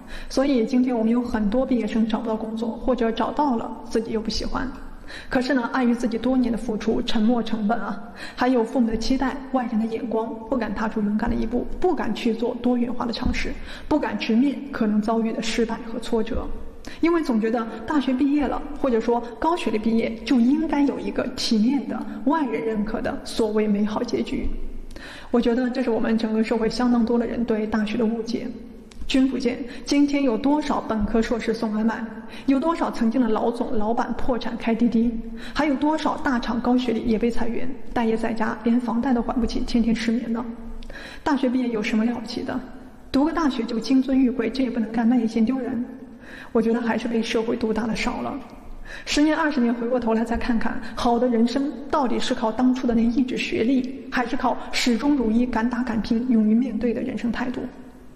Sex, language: female, Vietnamese